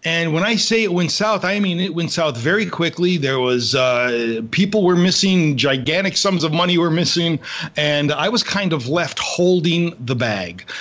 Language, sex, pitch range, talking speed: English, male, 125-175 Hz, 195 wpm